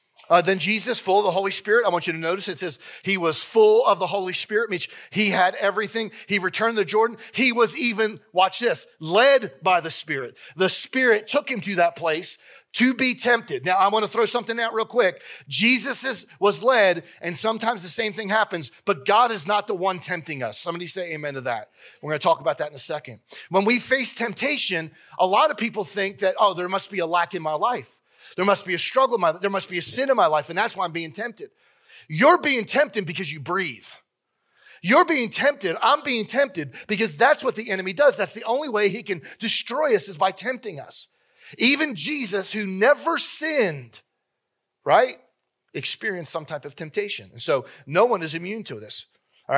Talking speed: 220 wpm